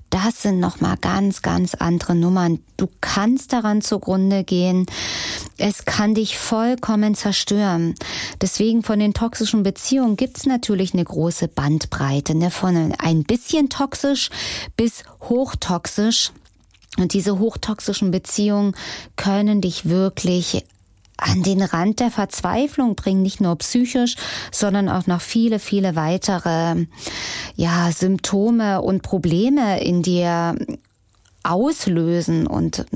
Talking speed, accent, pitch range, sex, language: 120 wpm, German, 180-225 Hz, female, German